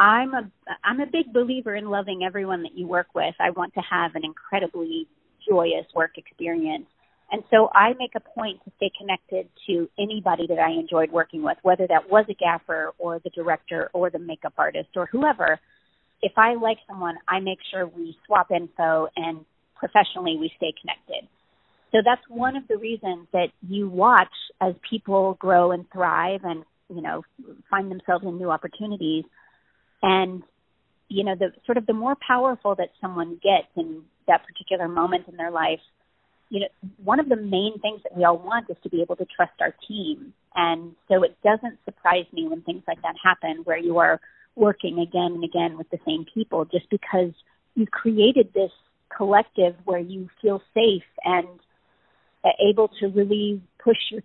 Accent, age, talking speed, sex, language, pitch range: American, 30-49, 180 wpm, female, English, 175-220 Hz